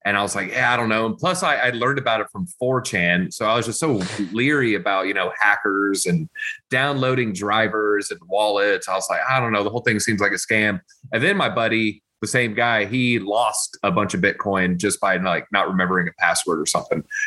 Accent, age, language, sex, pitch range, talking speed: American, 30-49, English, male, 100-135 Hz, 235 wpm